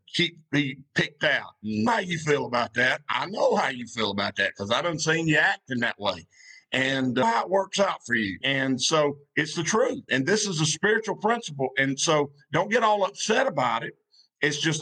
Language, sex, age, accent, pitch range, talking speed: English, male, 50-69, American, 145-195 Hz, 225 wpm